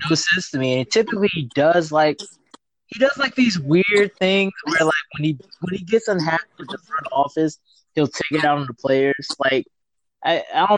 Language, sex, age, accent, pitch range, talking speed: English, male, 20-39, American, 145-210 Hz, 205 wpm